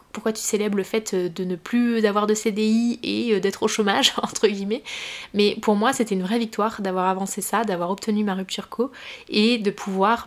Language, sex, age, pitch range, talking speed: French, female, 20-39, 195-230 Hz, 205 wpm